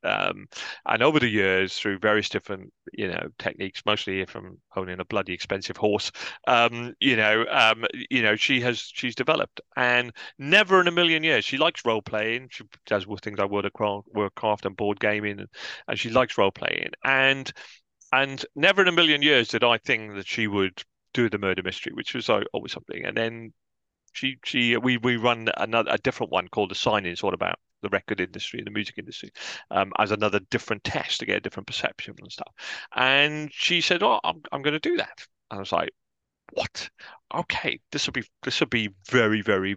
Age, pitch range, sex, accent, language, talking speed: 30-49, 105-155 Hz, male, British, English, 200 wpm